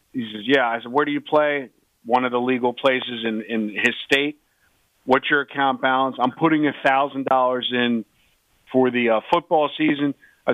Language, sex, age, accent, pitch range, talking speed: English, male, 50-69, American, 125-145 Hz, 195 wpm